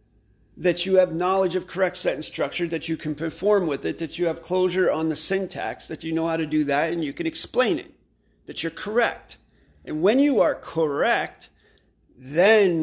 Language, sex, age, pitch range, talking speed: English, male, 40-59, 140-185 Hz, 195 wpm